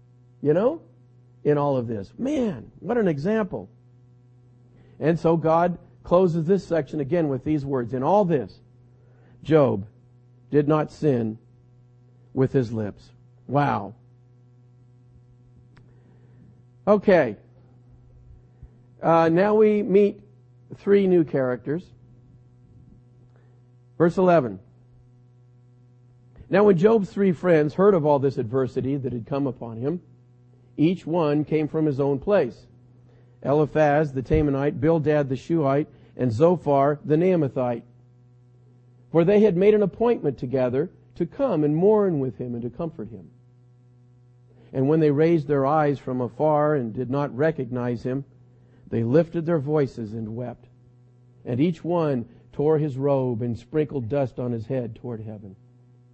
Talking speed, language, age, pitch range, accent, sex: 130 wpm, English, 50-69, 125-155 Hz, American, male